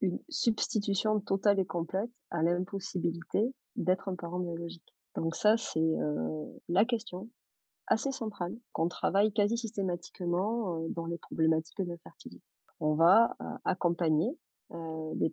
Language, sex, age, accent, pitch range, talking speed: French, female, 30-49, French, 160-195 Hz, 140 wpm